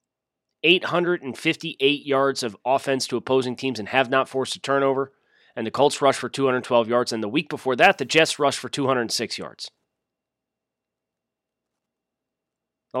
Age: 30-49